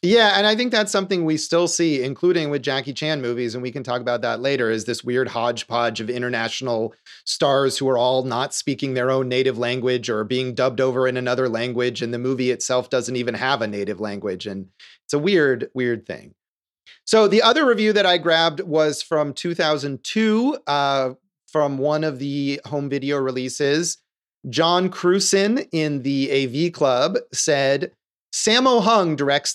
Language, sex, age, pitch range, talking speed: English, male, 30-49, 130-180 Hz, 180 wpm